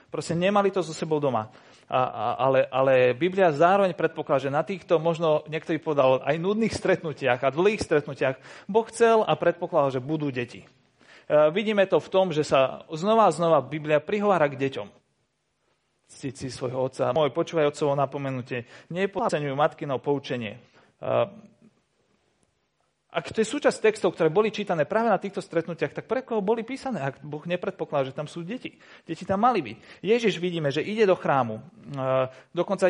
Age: 40-59